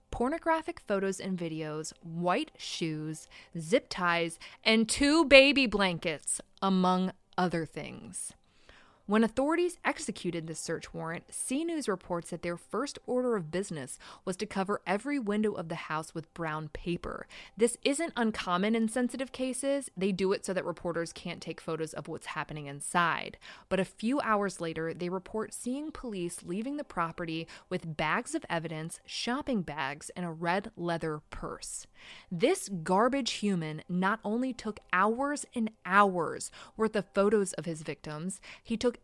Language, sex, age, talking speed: English, female, 20-39, 150 wpm